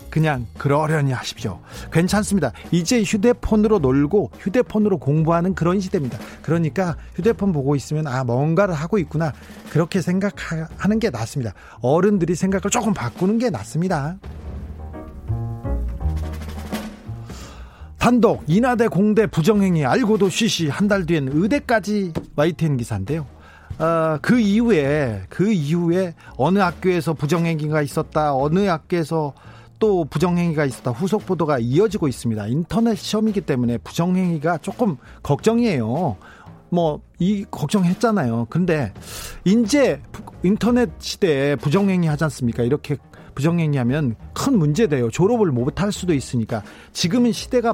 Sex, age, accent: male, 40-59, native